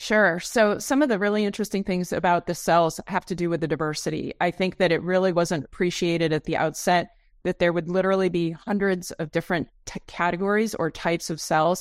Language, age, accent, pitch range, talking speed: English, 30-49, American, 160-195 Hz, 205 wpm